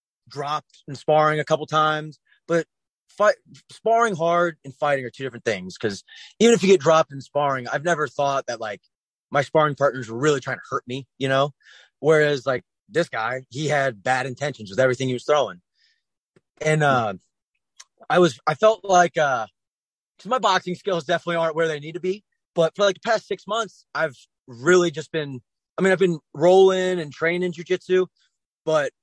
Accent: American